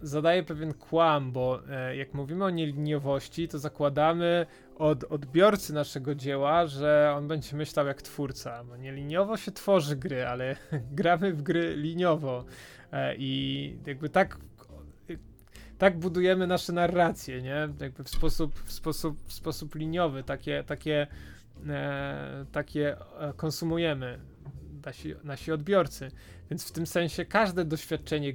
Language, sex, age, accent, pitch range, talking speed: Polish, male, 20-39, native, 135-160 Hz, 135 wpm